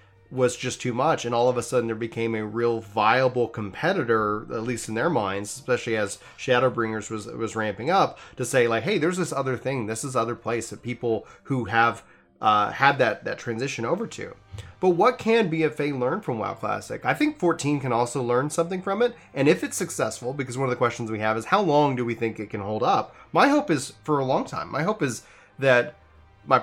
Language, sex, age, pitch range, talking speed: English, male, 30-49, 110-140 Hz, 225 wpm